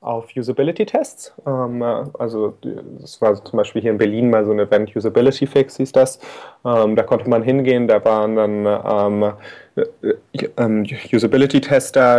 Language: German